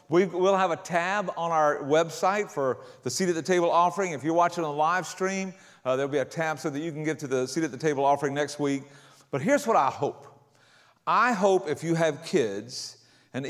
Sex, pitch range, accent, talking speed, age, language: male, 130-170 Hz, American, 230 wpm, 50-69, English